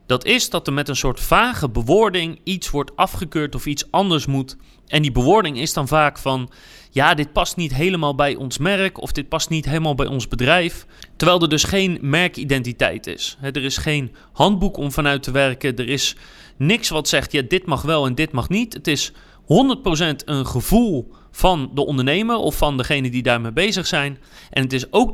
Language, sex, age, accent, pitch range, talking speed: Dutch, male, 30-49, Dutch, 135-180 Hz, 205 wpm